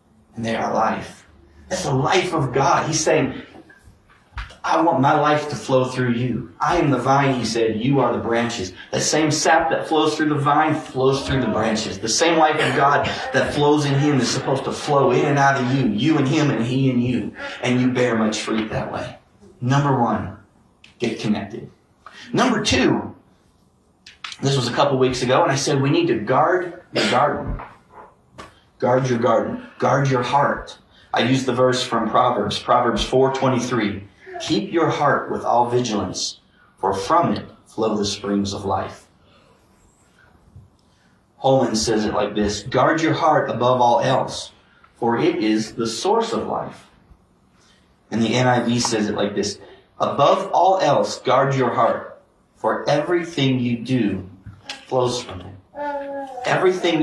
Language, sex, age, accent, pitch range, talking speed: English, male, 40-59, American, 115-145 Hz, 170 wpm